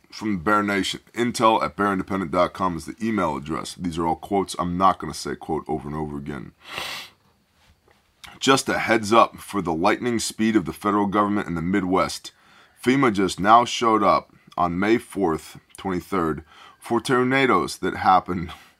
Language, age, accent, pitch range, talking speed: English, 20-39, American, 85-110 Hz, 170 wpm